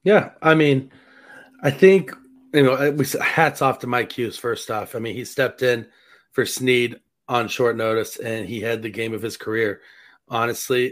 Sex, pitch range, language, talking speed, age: male, 110-130 Hz, English, 180 wpm, 30-49